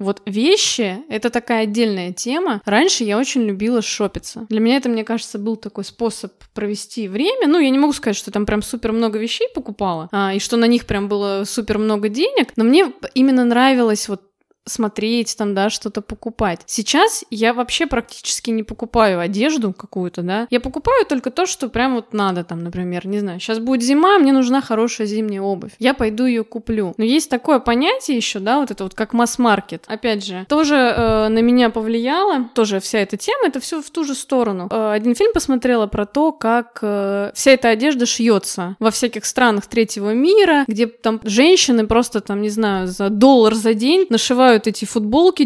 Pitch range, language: 210-255 Hz, Russian